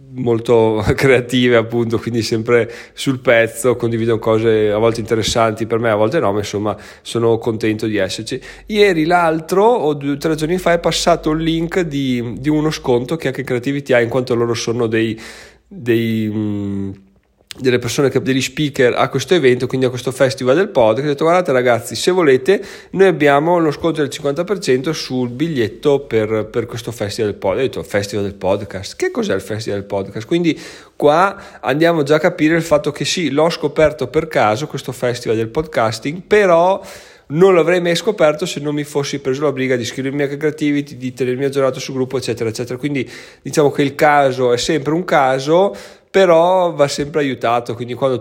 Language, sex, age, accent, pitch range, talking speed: Italian, male, 30-49, native, 115-150 Hz, 190 wpm